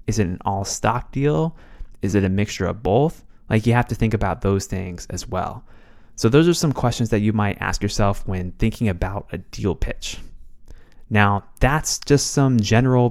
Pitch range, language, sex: 95-115 Hz, English, male